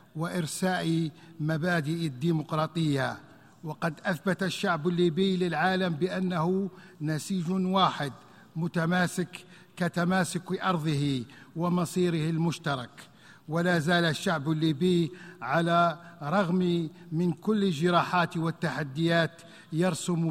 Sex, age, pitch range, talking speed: male, 50-69, 160-180 Hz, 80 wpm